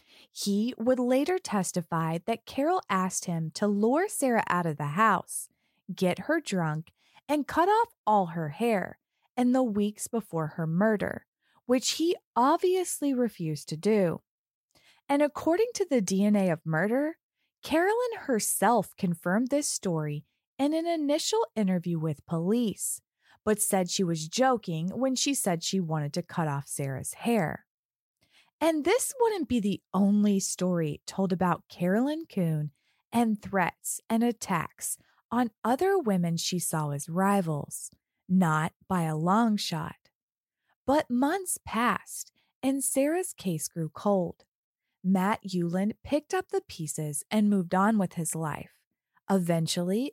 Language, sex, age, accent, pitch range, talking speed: English, female, 20-39, American, 170-270 Hz, 140 wpm